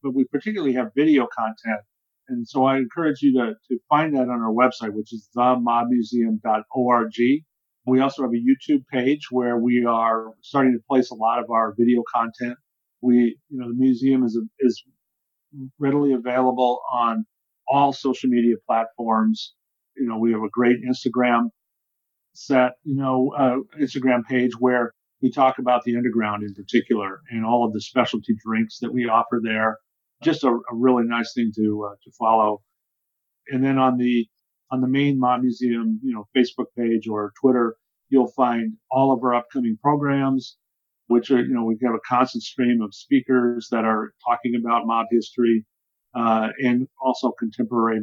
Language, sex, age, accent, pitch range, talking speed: English, male, 40-59, American, 115-130 Hz, 170 wpm